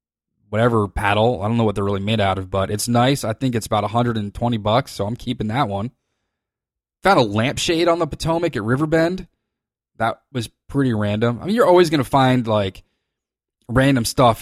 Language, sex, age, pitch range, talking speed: English, male, 20-39, 105-135 Hz, 195 wpm